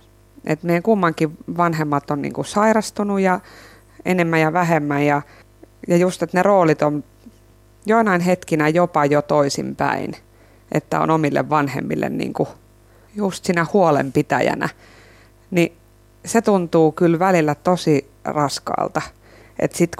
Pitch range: 145-195 Hz